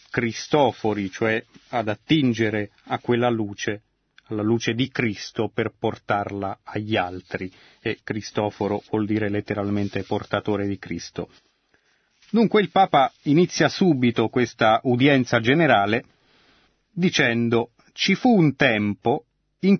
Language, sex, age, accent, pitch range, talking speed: Italian, male, 30-49, native, 105-130 Hz, 110 wpm